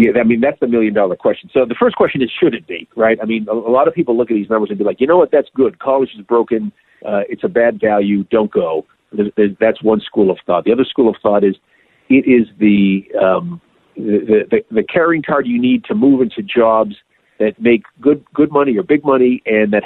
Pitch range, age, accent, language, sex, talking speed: 105-130 Hz, 50-69, American, English, male, 240 wpm